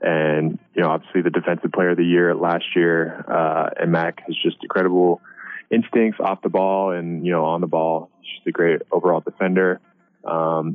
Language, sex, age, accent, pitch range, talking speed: English, male, 20-39, American, 85-100 Hz, 190 wpm